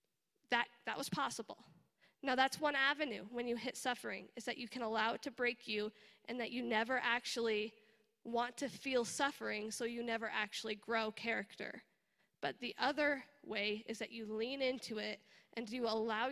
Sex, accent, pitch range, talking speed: female, American, 220-260 Hz, 180 wpm